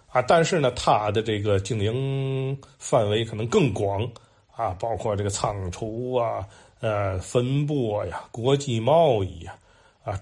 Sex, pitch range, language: male, 100-125 Hz, Chinese